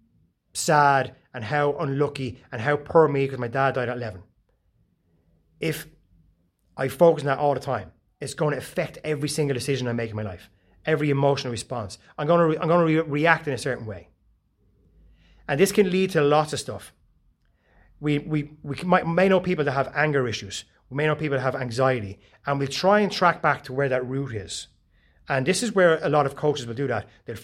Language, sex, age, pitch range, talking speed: English, male, 30-49, 110-155 Hz, 215 wpm